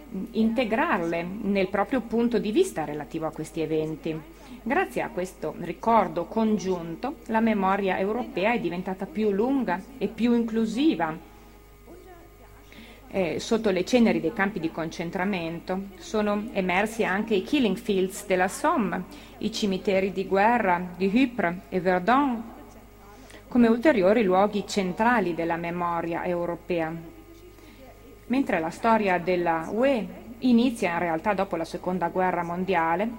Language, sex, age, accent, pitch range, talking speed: Italian, female, 30-49, native, 180-230 Hz, 125 wpm